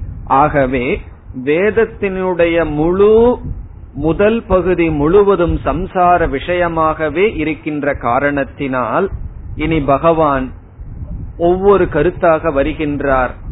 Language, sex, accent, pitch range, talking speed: Tamil, male, native, 125-175 Hz, 60 wpm